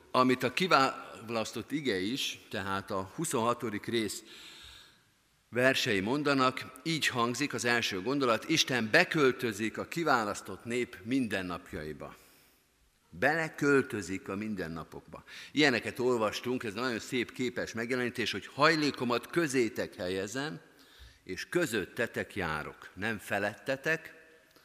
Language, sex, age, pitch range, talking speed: Hungarian, male, 50-69, 105-135 Hz, 100 wpm